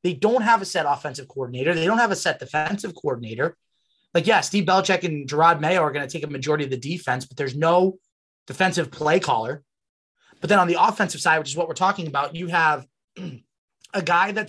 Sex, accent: male, American